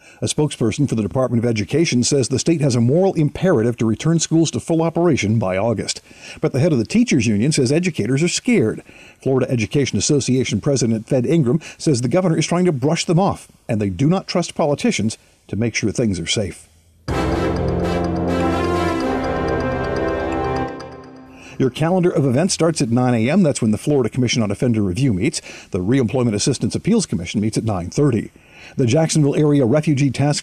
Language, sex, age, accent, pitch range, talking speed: English, male, 50-69, American, 105-150 Hz, 175 wpm